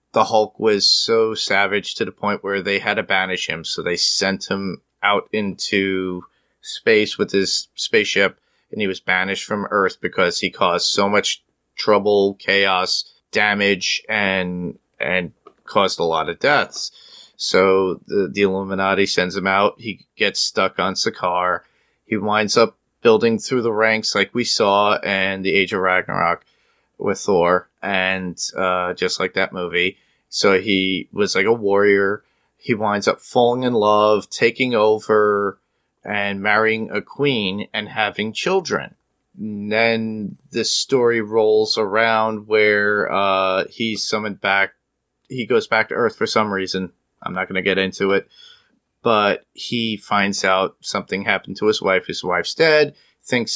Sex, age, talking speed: male, 30-49, 155 wpm